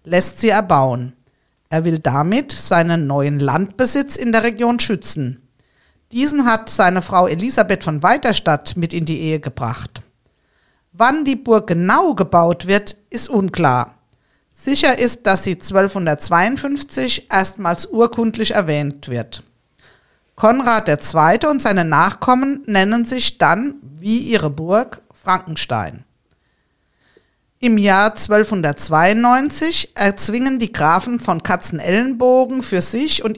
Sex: female